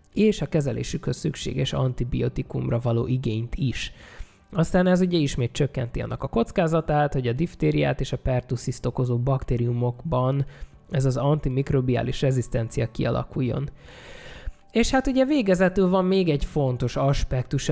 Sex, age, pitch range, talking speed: male, 20-39, 125-165 Hz, 130 wpm